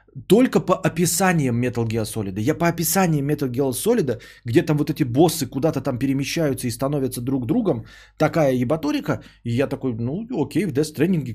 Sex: male